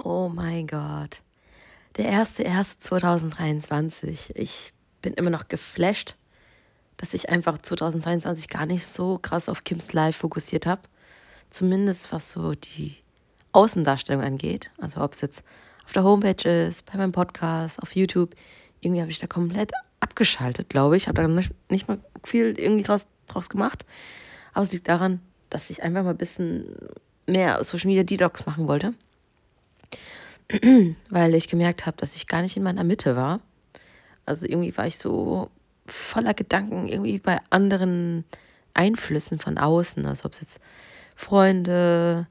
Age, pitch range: 30-49, 160-190 Hz